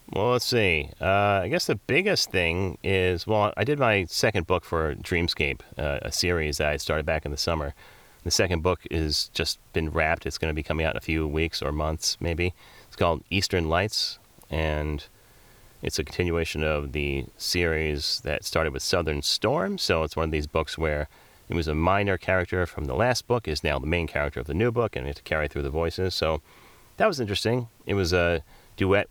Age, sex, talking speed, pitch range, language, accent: 30-49, male, 210 wpm, 80-100 Hz, English, American